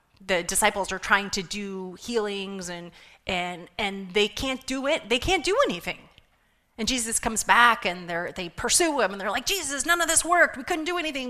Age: 30-49